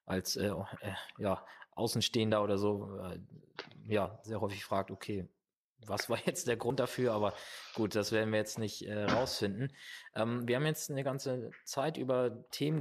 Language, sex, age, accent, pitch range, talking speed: German, male, 20-39, German, 110-140 Hz, 160 wpm